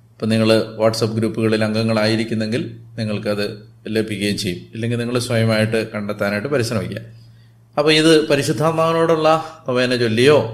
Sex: male